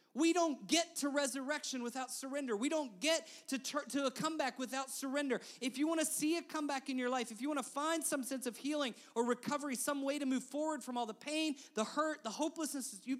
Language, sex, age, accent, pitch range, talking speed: English, male, 30-49, American, 180-280 Hz, 240 wpm